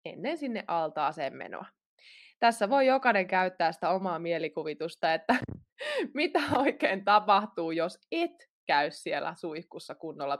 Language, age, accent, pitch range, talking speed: Finnish, 20-39, native, 170-230 Hz, 120 wpm